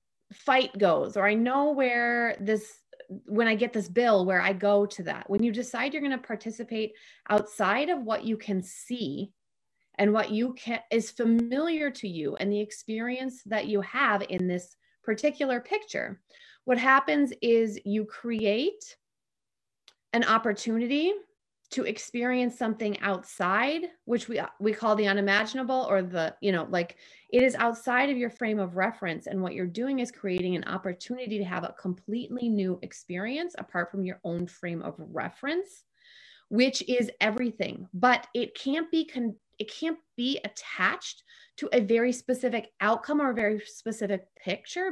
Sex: female